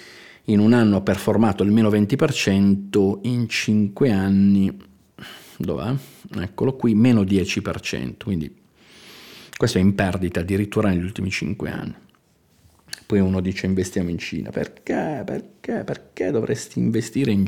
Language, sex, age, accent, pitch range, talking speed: Italian, male, 40-59, native, 95-105 Hz, 125 wpm